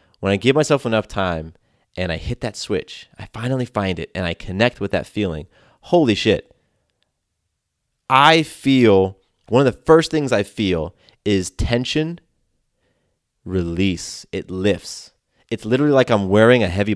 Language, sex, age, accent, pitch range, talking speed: English, male, 30-49, American, 90-120 Hz, 155 wpm